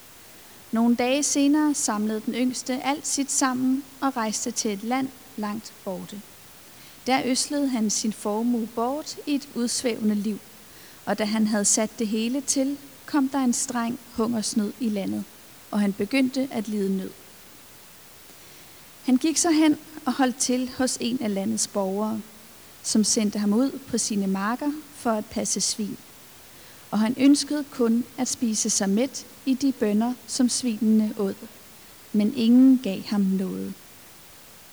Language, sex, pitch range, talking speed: Danish, female, 215-265 Hz, 155 wpm